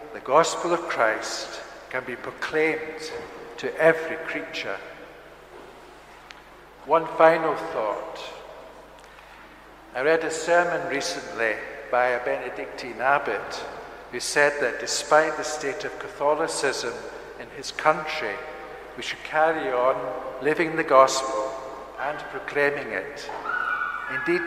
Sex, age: male, 60-79